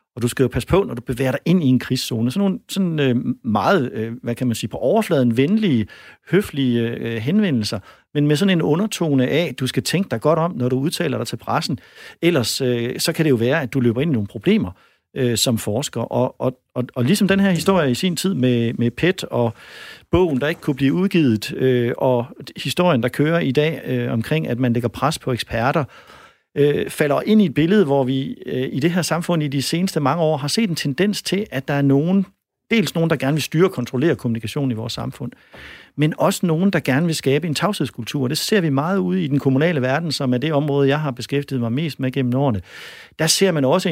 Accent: native